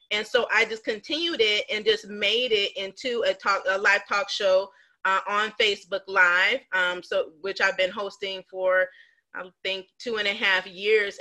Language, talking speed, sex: English, 185 wpm, female